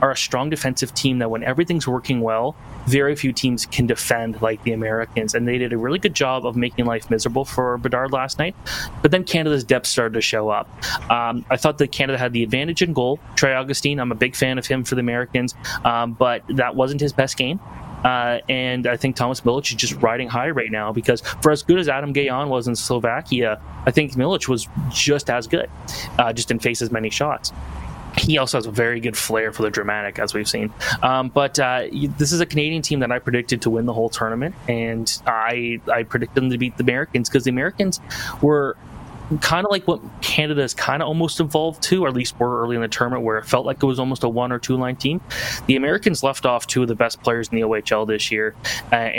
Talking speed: 235 wpm